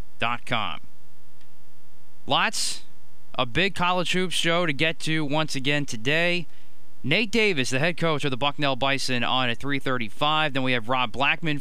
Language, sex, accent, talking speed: English, male, American, 155 wpm